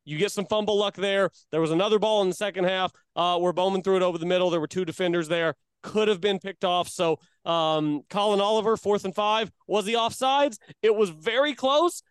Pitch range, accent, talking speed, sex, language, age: 185-240 Hz, American, 230 wpm, male, English, 30-49